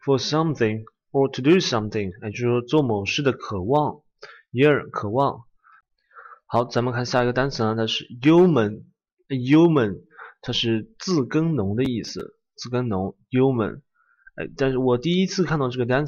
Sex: male